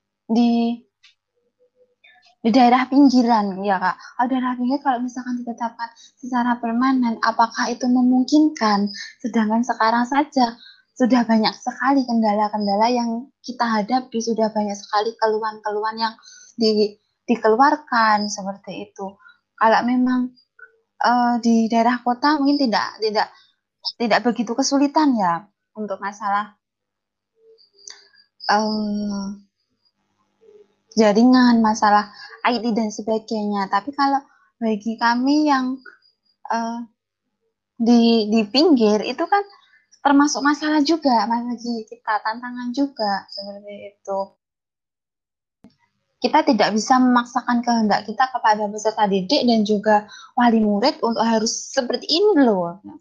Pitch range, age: 215-260 Hz, 20-39